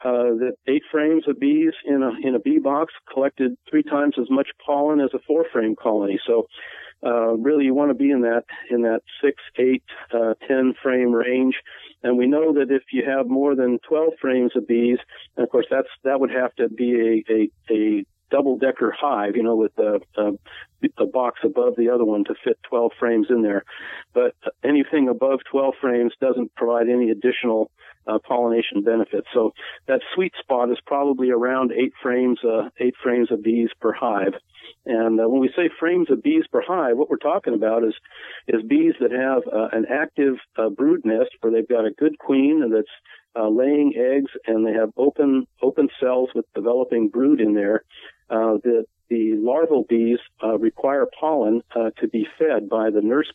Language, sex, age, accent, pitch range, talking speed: English, male, 50-69, American, 115-140 Hz, 195 wpm